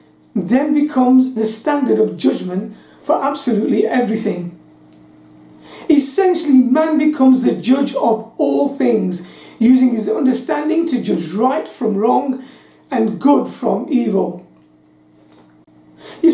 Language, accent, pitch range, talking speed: English, British, 185-285 Hz, 110 wpm